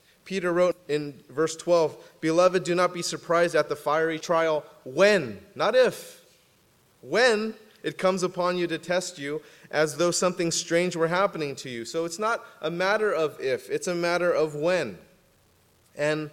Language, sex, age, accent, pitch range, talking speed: English, male, 30-49, American, 135-175 Hz, 170 wpm